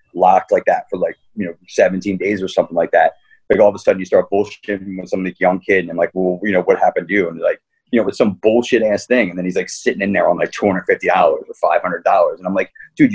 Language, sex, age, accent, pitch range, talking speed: English, male, 30-49, American, 100-120 Hz, 285 wpm